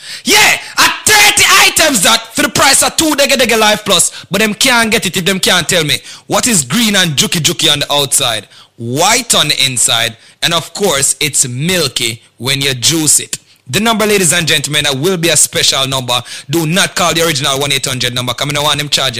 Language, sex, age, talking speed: English, male, 30-49, 220 wpm